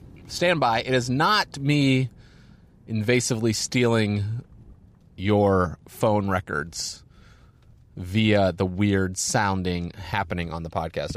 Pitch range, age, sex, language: 100-130 Hz, 30-49, male, English